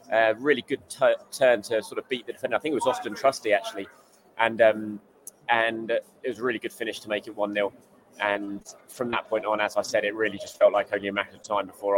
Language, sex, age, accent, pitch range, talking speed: English, male, 20-39, British, 105-145 Hz, 260 wpm